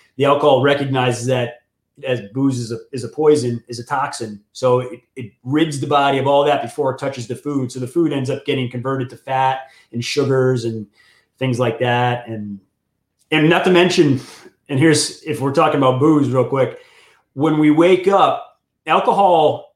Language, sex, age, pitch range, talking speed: English, male, 30-49, 125-160 Hz, 190 wpm